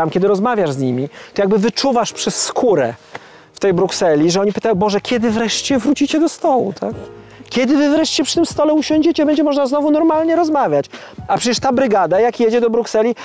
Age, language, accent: 40-59, Polish, native